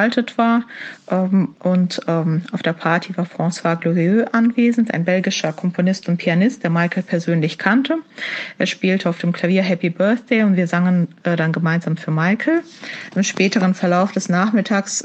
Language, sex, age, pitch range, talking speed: German, female, 30-49, 175-220 Hz, 160 wpm